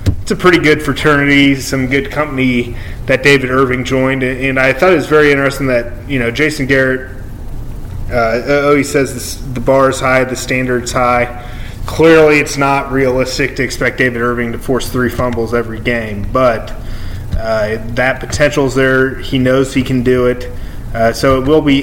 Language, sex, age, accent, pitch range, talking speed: English, male, 30-49, American, 120-135 Hz, 180 wpm